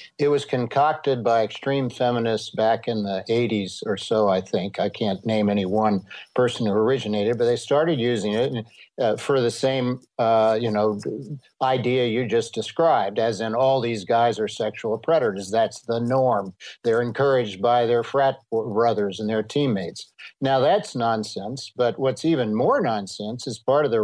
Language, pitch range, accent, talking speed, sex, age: English, 110-130 Hz, American, 175 wpm, male, 60-79